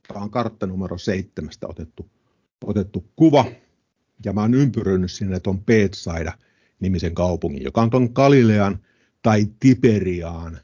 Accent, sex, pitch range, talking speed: native, male, 90-115 Hz, 125 wpm